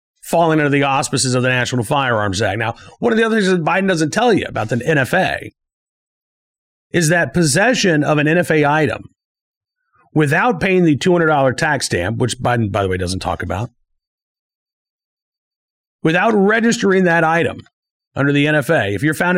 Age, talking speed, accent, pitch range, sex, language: 40-59, 165 wpm, American, 130-190 Hz, male, English